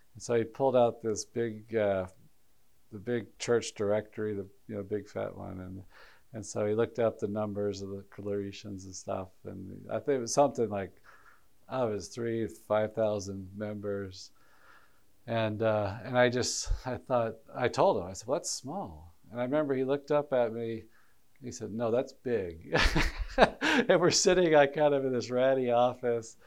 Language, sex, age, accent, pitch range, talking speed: English, male, 40-59, American, 100-120 Hz, 190 wpm